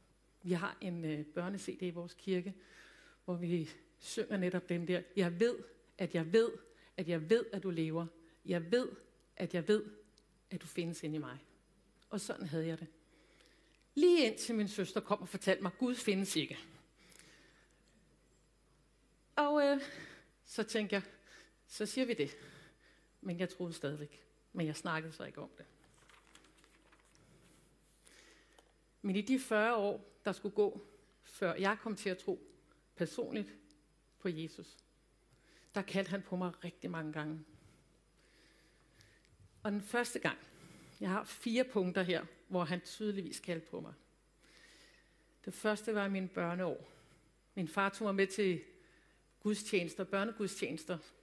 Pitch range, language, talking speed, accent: 165-205 Hz, Danish, 150 wpm, native